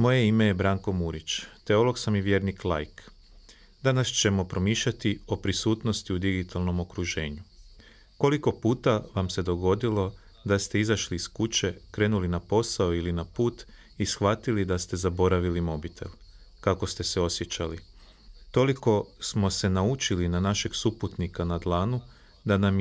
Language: Croatian